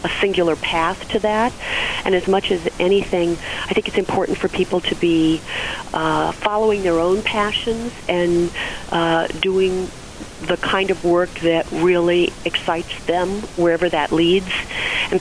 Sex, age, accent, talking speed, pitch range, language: female, 40-59, American, 150 wpm, 165-190 Hz, English